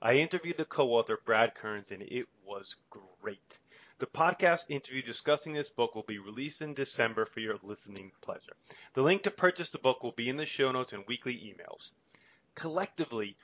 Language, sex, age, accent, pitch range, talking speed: English, male, 30-49, American, 115-150 Hz, 185 wpm